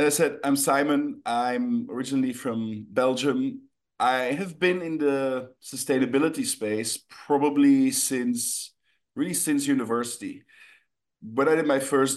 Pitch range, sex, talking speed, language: 115-155 Hz, male, 130 wpm, English